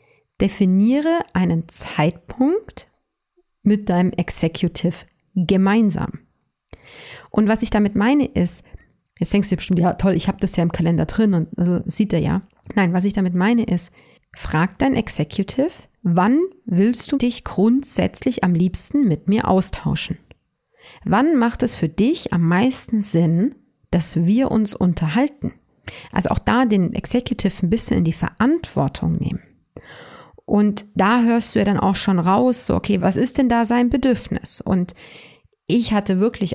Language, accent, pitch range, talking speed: German, German, 180-235 Hz, 155 wpm